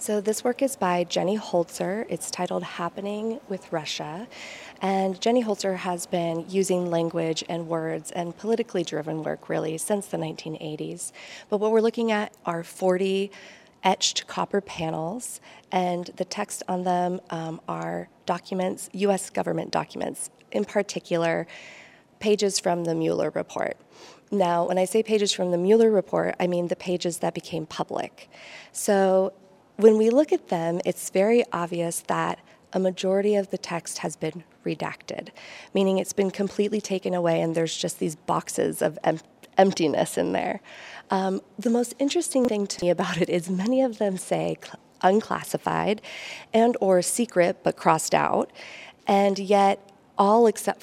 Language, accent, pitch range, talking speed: English, American, 175-210 Hz, 155 wpm